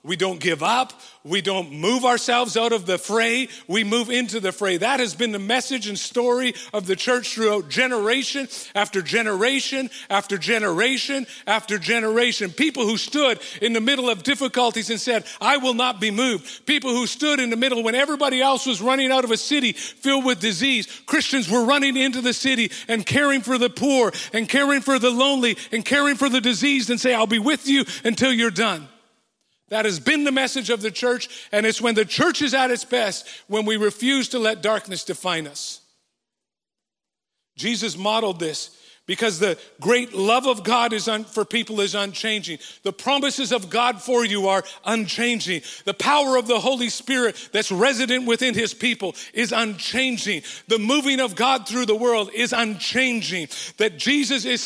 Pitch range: 215-260 Hz